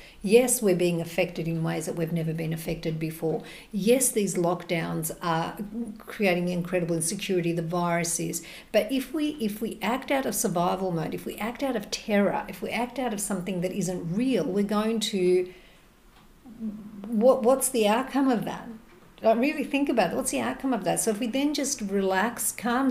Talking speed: 190 wpm